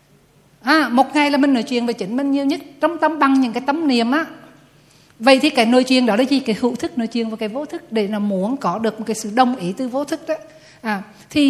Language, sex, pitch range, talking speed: Vietnamese, female, 210-275 Hz, 270 wpm